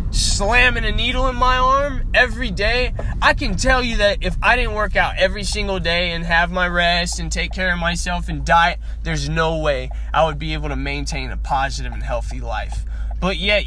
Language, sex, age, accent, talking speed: English, male, 20-39, American, 210 wpm